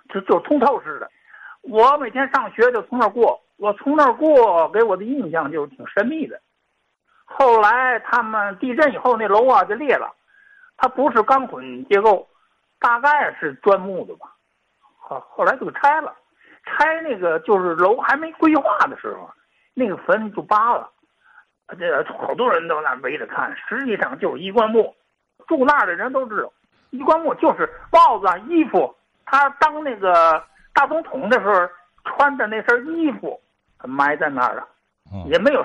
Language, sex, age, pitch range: Chinese, male, 60-79, 215-320 Hz